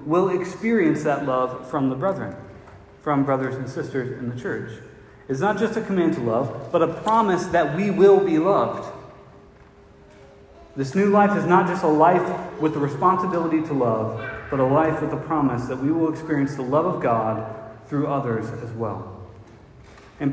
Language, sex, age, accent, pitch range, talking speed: English, male, 40-59, American, 125-175 Hz, 180 wpm